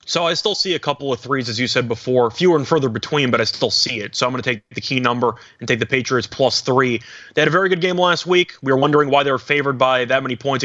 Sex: male